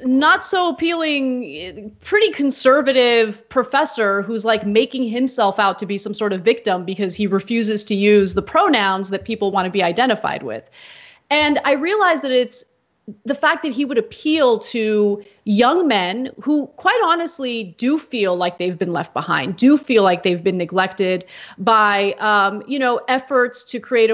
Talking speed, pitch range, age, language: 170 wpm, 205-275 Hz, 30-49, English